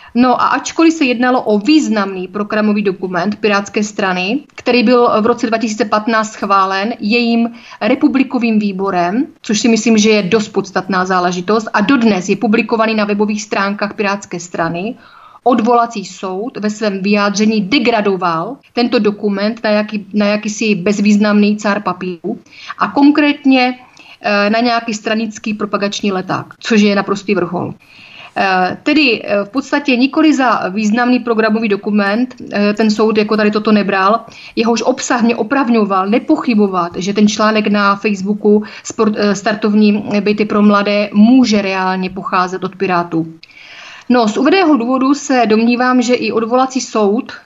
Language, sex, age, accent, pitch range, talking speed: Czech, female, 30-49, native, 200-235 Hz, 135 wpm